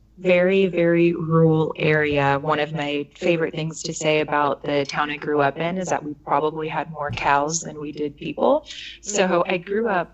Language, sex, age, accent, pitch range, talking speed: English, female, 20-39, American, 150-175 Hz, 195 wpm